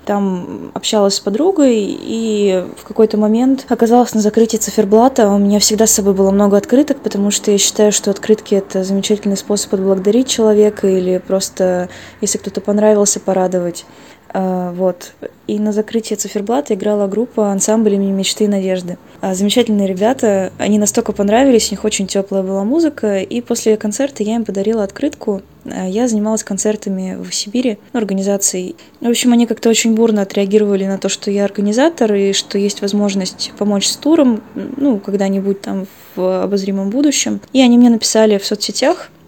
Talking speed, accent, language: 160 wpm, native, Russian